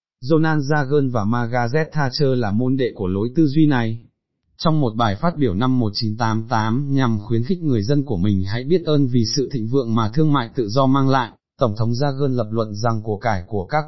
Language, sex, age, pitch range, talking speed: Vietnamese, male, 20-39, 110-145 Hz, 220 wpm